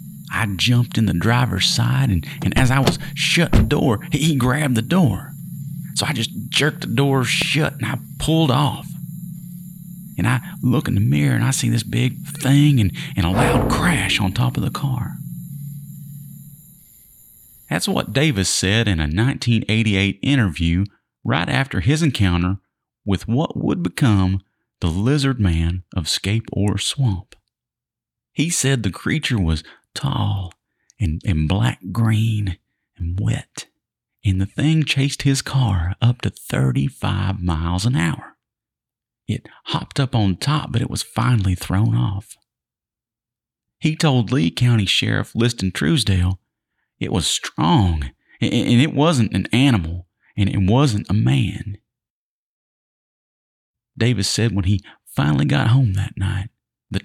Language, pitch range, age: English, 100-140 Hz, 40-59